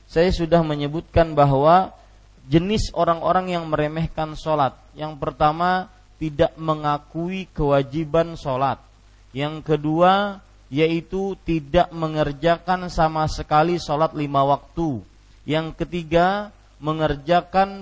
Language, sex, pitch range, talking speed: Malay, male, 145-175 Hz, 95 wpm